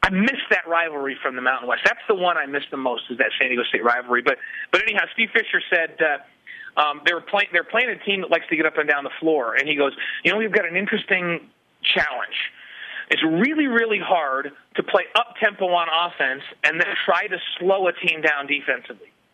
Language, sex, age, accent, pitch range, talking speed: English, male, 40-59, American, 160-205 Hz, 220 wpm